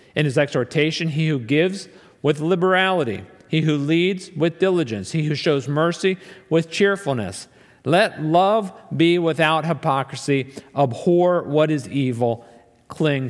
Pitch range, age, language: 135-185 Hz, 50-69, English